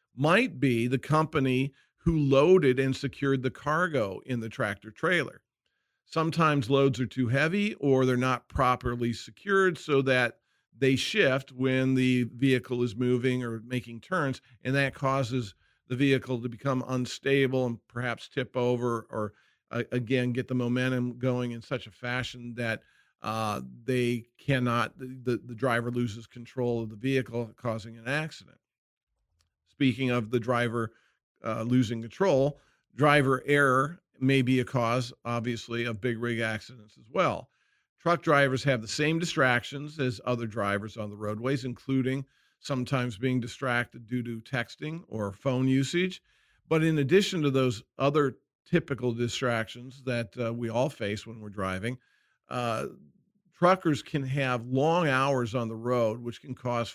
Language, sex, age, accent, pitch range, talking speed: English, male, 50-69, American, 120-135 Hz, 155 wpm